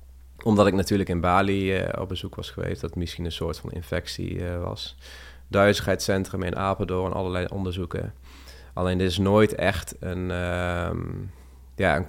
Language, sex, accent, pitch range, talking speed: Dutch, male, Dutch, 85-95 Hz, 150 wpm